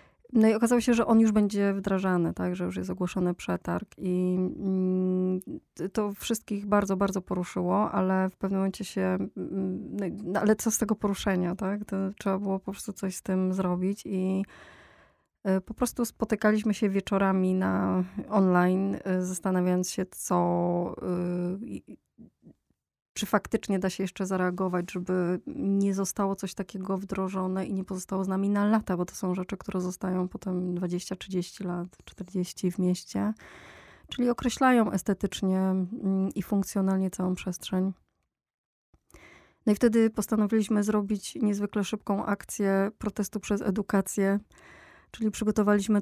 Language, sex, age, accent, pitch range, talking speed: Polish, female, 20-39, native, 185-210 Hz, 135 wpm